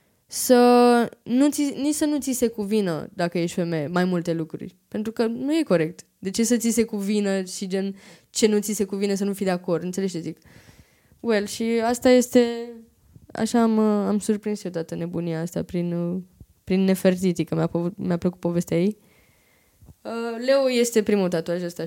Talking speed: 180 wpm